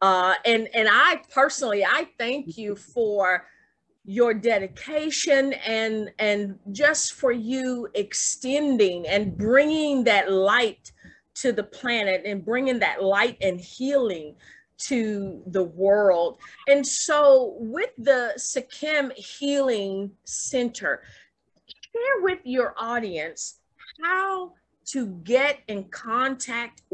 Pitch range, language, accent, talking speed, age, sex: 200-270 Hz, English, American, 110 wpm, 40-59, female